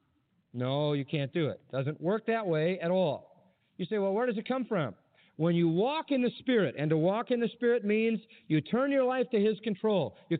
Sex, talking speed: male, 235 wpm